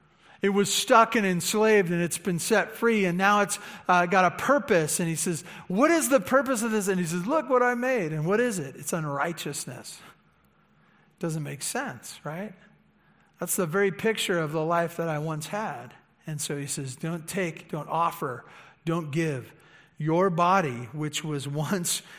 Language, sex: English, male